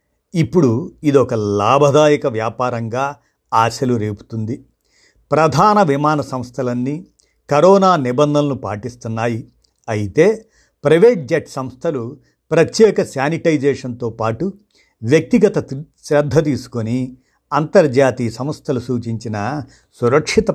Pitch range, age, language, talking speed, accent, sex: 120-160 Hz, 50-69, Telugu, 75 wpm, native, male